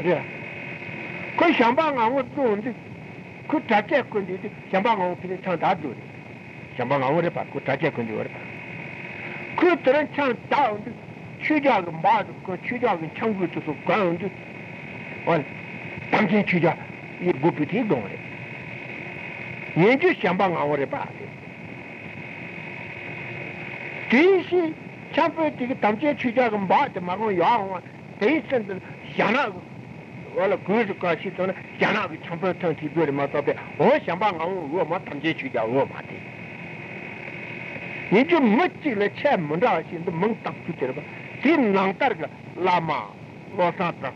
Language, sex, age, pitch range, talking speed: Italian, male, 60-79, 160-225 Hz, 40 wpm